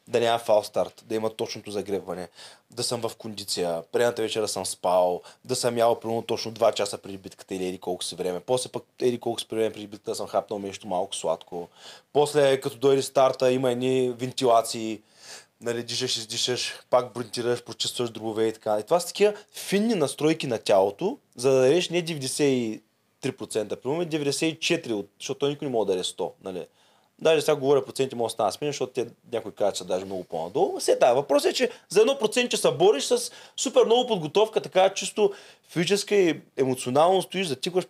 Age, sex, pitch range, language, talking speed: 20-39, male, 115-195 Hz, Bulgarian, 185 wpm